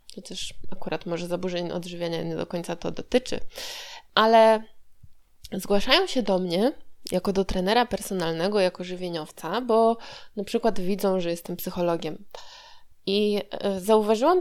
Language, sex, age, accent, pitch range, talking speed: Polish, female, 20-39, native, 175-220 Hz, 125 wpm